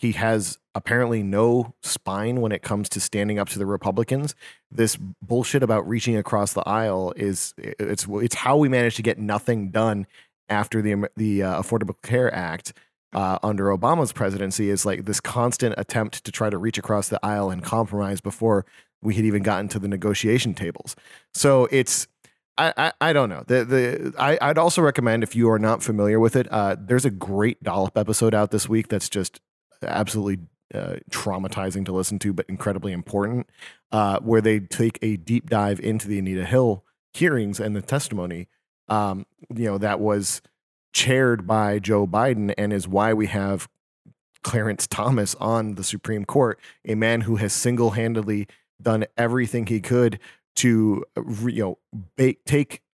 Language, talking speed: English, 170 wpm